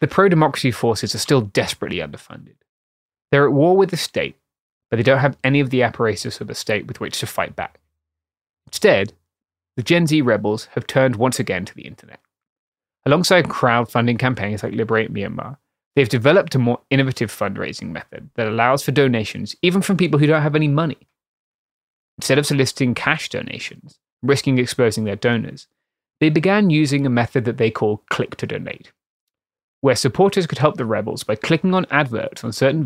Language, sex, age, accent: English, male, 20-39, British